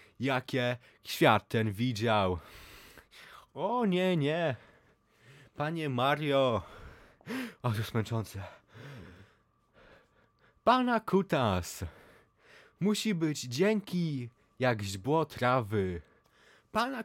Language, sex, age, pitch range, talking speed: Polish, male, 20-39, 115-170 Hz, 75 wpm